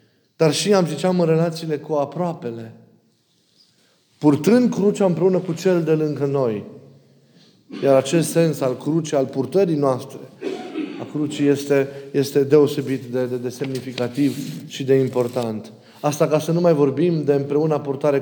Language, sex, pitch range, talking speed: Romanian, male, 140-175 Hz, 150 wpm